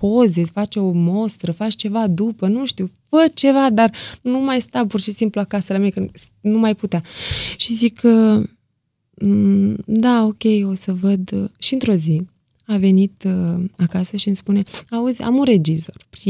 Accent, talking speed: native, 170 wpm